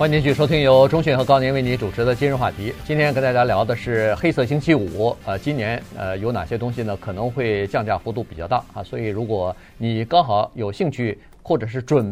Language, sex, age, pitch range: Chinese, male, 50-69, 105-140 Hz